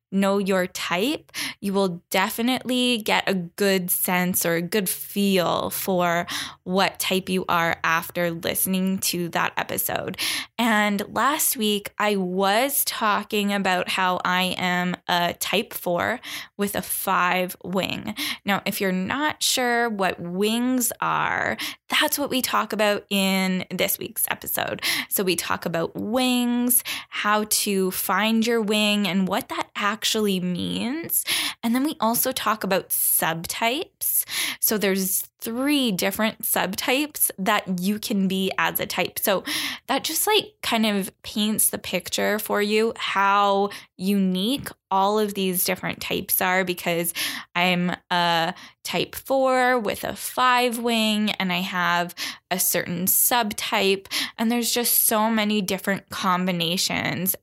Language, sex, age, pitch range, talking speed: English, female, 10-29, 185-230 Hz, 140 wpm